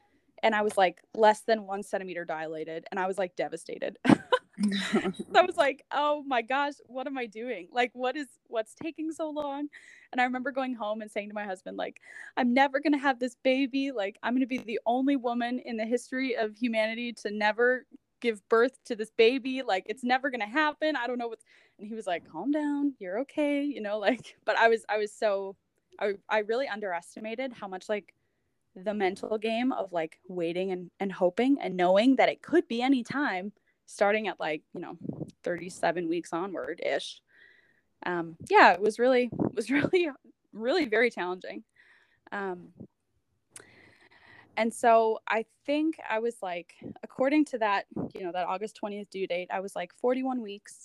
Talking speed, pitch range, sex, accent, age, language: 190 wpm, 205-270 Hz, female, American, 10-29, English